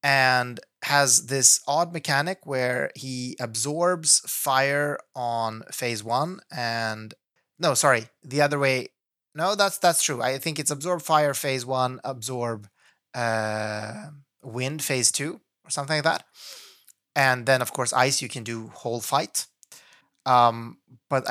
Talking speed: 140 wpm